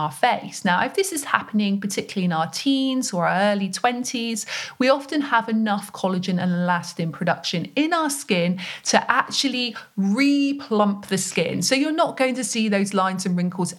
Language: English